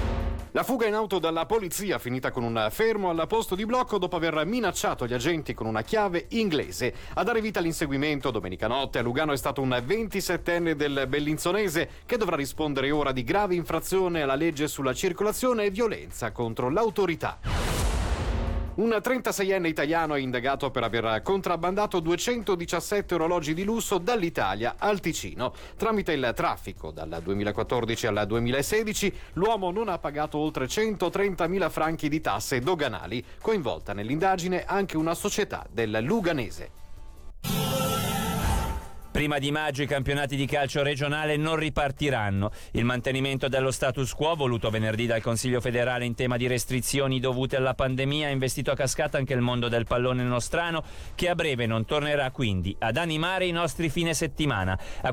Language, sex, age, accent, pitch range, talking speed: Italian, male, 40-59, native, 125-170 Hz, 155 wpm